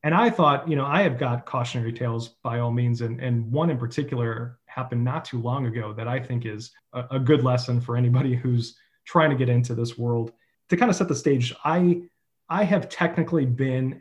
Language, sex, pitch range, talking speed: English, male, 120-145 Hz, 220 wpm